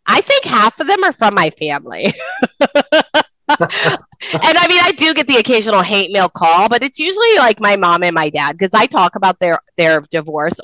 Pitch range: 170-250 Hz